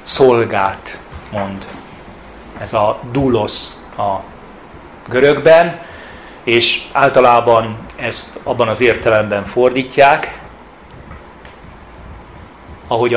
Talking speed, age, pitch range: 70 wpm, 30-49, 110-145 Hz